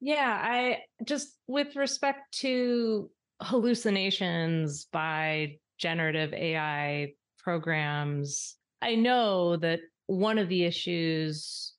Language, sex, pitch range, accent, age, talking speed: English, female, 160-210 Hz, American, 30-49, 90 wpm